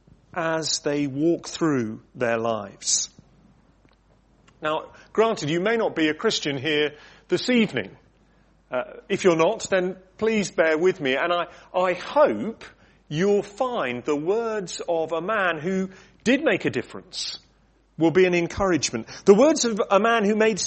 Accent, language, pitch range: British, English, 150-205 Hz